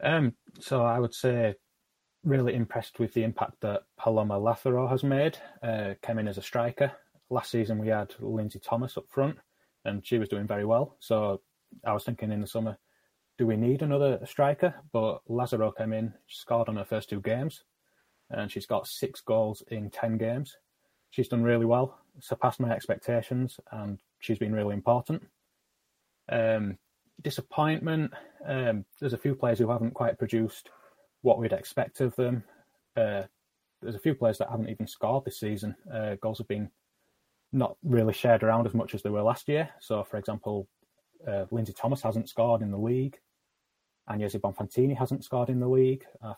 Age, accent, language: 20-39, British, English